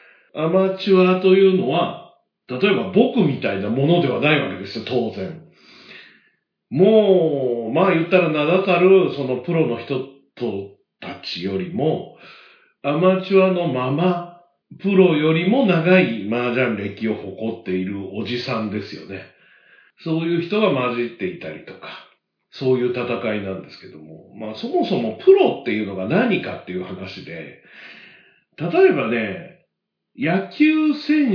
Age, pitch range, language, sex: 50-69, 120-195 Hz, Japanese, male